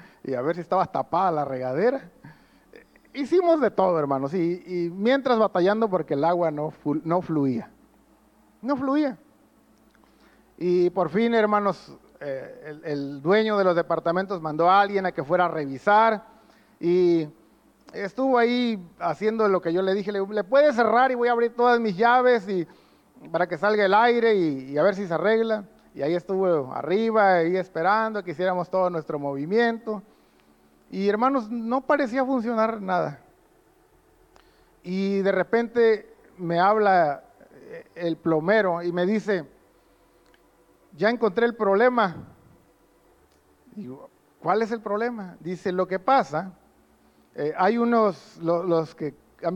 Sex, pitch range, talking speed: male, 170-220 Hz, 150 wpm